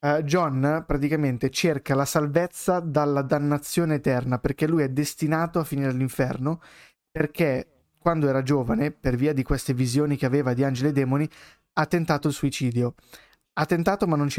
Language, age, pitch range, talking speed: Italian, 20-39, 135-160 Hz, 165 wpm